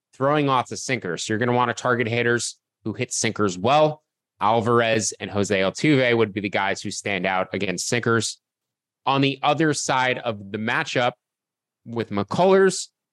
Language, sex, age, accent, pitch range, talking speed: English, male, 20-39, American, 115-140 Hz, 170 wpm